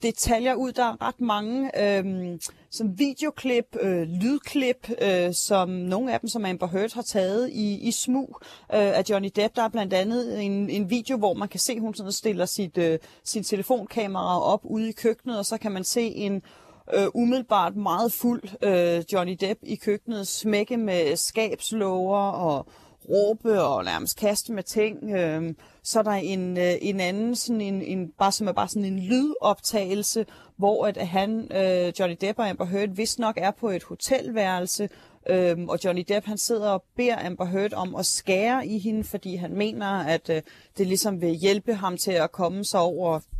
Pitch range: 185-225 Hz